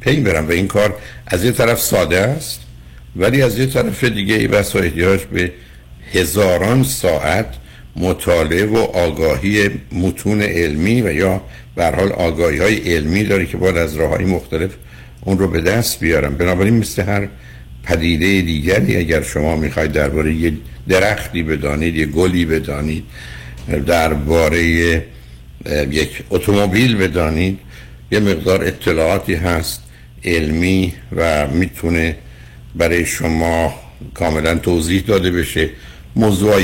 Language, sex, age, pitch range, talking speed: Persian, male, 60-79, 65-95 Hz, 125 wpm